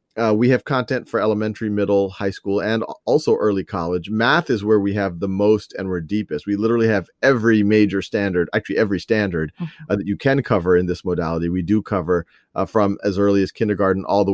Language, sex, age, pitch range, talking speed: English, male, 30-49, 100-125 Hz, 215 wpm